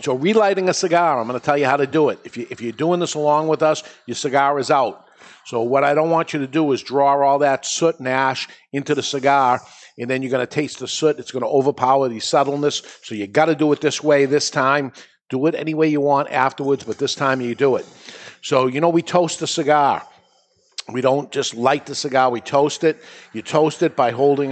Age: 50-69